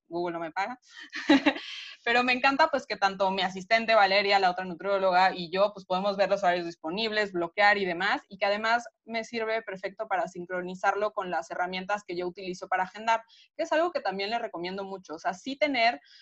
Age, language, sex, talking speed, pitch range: 20-39, Spanish, female, 205 wpm, 195-240 Hz